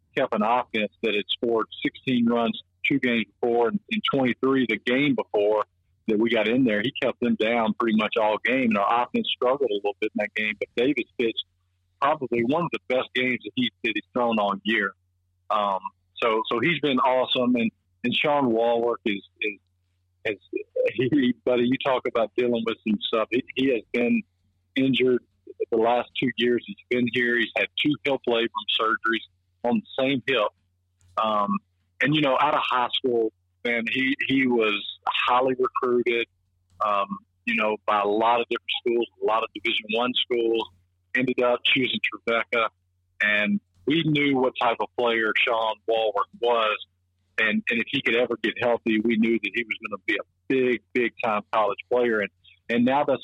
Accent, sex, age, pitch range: American, male, 50-69, 105-125 Hz